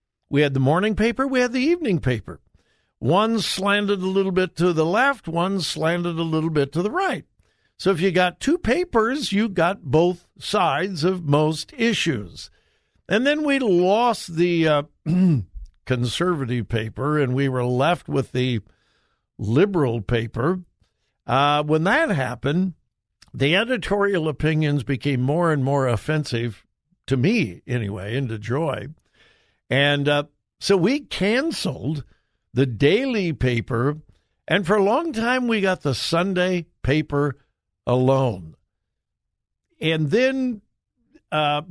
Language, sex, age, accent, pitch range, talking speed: English, male, 60-79, American, 130-185 Hz, 135 wpm